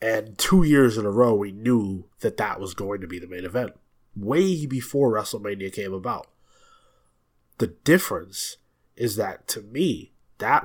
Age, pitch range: 20-39, 105-140 Hz